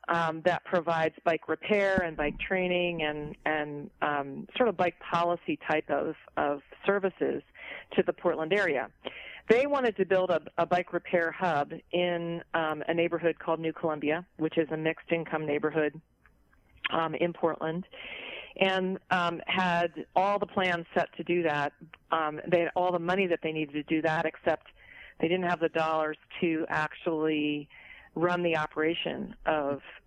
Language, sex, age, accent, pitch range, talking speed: English, female, 40-59, American, 155-180 Hz, 165 wpm